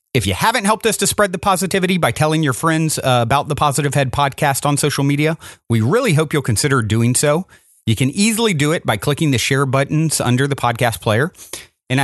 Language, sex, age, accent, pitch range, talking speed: English, male, 40-59, American, 135-195 Hz, 220 wpm